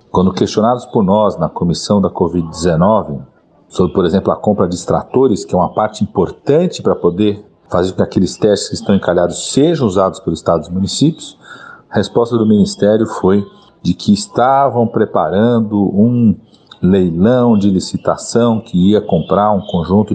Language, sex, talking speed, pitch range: Portuguese, male, 160 wpm, 90-120 Hz